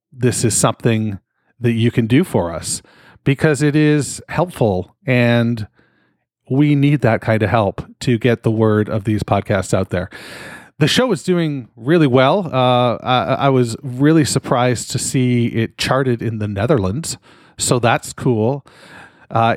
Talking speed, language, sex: 160 wpm, English, male